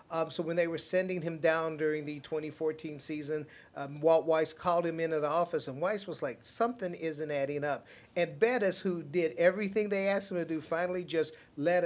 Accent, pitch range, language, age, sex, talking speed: American, 160-205 Hz, English, 50-69, male, 210 wpm